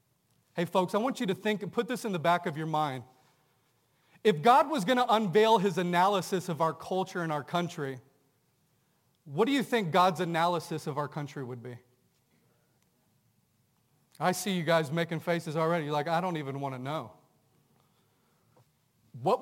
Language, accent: English, American